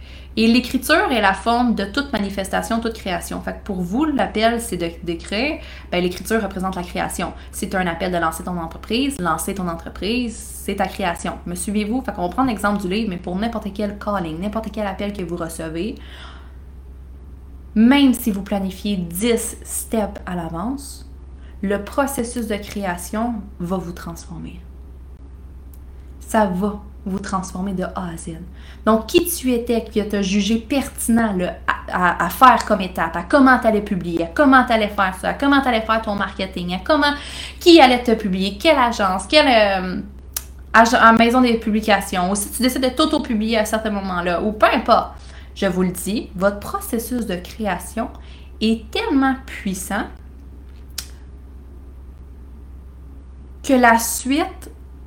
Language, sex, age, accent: English, female, 20-39, Canadian